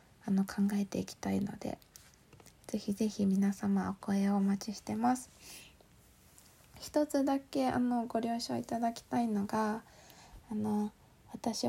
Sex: female